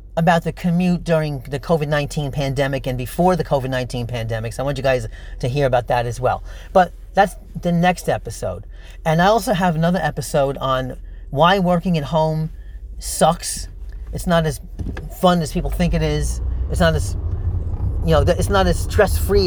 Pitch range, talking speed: 90-135 Hz, 180 wpm